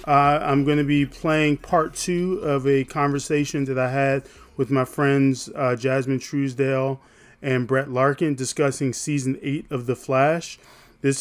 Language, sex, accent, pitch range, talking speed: English, male, American, 130-150 Hz, 160 wpm